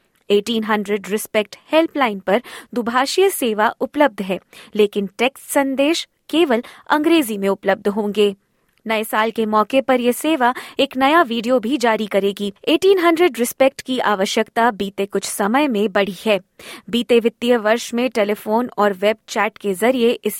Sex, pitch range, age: female, 210-265 Hz, 20-39